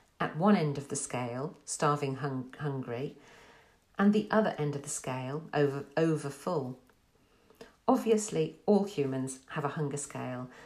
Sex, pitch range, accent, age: female, 140-200 Hz, British, 50-69